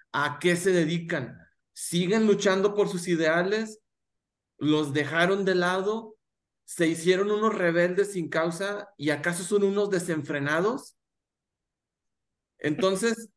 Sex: male